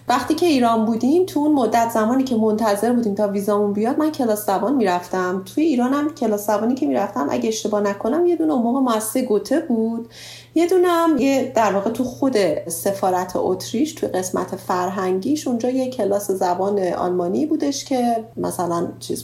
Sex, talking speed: female, 170 wpm